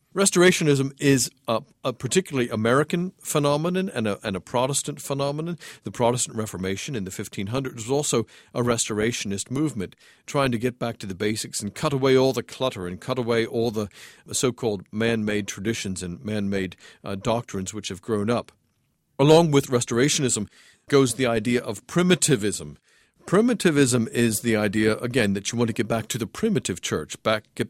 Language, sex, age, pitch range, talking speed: English, male, 50-69, 105-140 Hz, 165 wpm